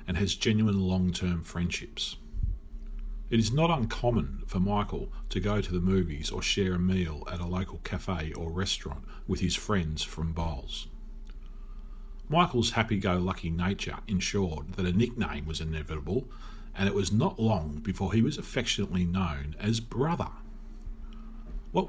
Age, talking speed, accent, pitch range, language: 40-59, 145 wpm, Australian, 85-110 Hz, English